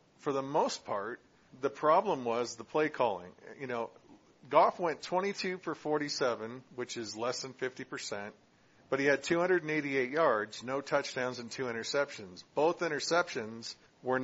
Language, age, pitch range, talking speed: English, 40-59, 115-145 Hz, 150 wpm